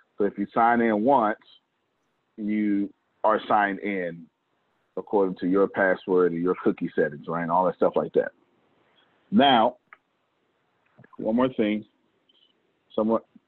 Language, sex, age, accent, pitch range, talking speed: English, male, 40-59, American, 95-120 Hz, 135 wpm